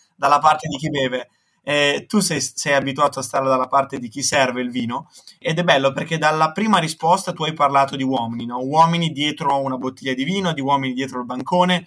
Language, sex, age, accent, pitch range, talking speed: Italian, male, 20-39, native, 135-165 Hz, 215 wpm